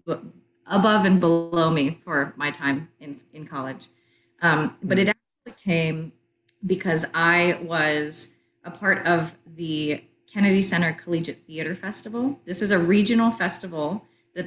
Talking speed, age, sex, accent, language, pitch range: 135 wpm, 30-49, female, American, English, 155-190 Hz